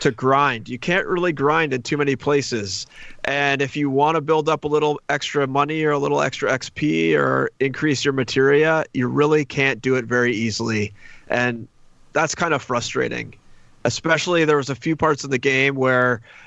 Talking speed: 190 wpm